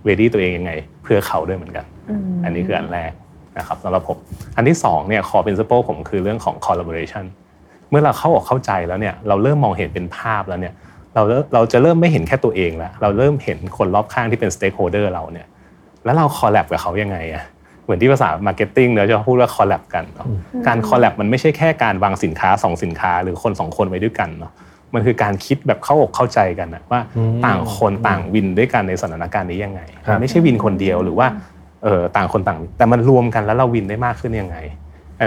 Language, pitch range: Thai, 90-120 Hz